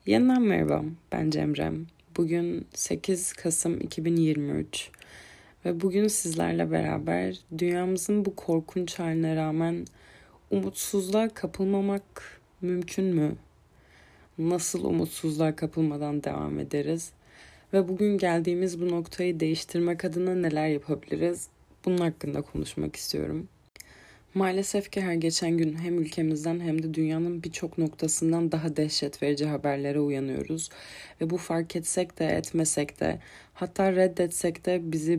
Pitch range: 150-180 Hz